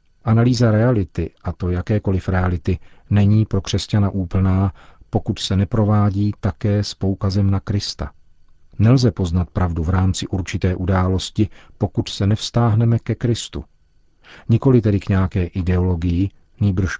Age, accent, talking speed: 40-59, native, 125 wpm